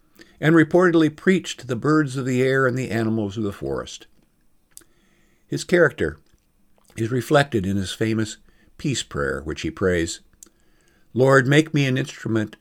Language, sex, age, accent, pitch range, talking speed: English, male, 50-69, American, 95-135 Hz, 150 wpm